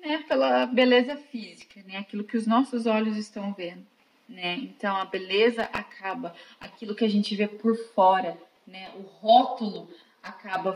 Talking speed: 155 wpm